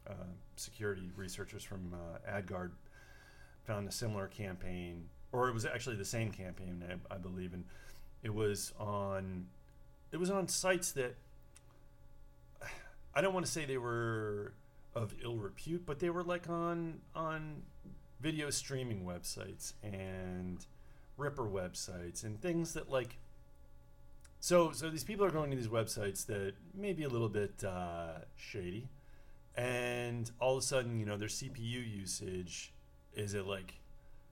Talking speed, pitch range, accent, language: 150 wpm, 90-125 Hz, American, English